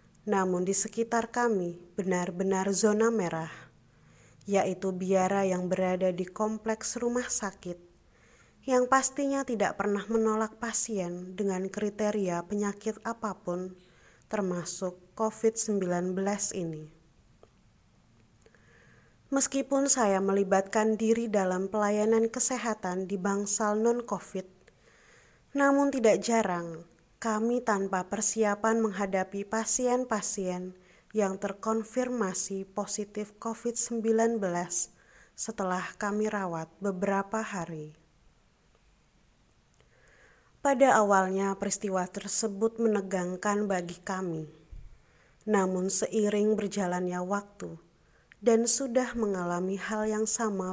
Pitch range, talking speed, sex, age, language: 185-225 Hz, 85 wpm, female, 20-39, Indonesian